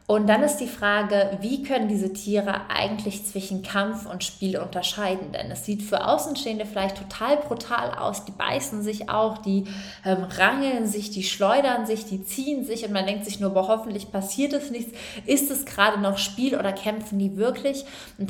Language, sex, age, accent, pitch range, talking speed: German, female, 20-39, German, 190-215 Hz, 190 wpm